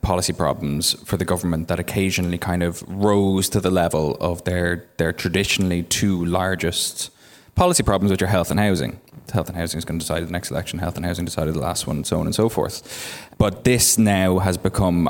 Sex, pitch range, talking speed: male, 85-95 Hz, 215 wpm